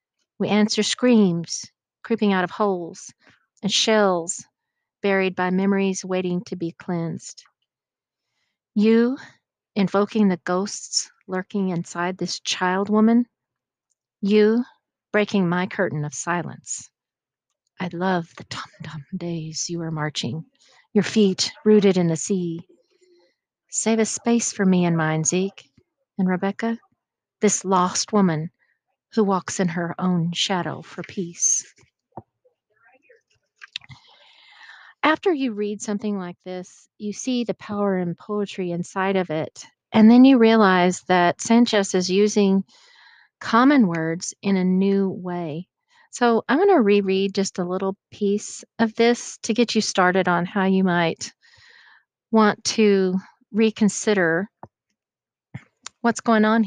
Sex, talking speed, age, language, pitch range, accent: female, 130 wpm, 40-59, English, 180-225 Hz, American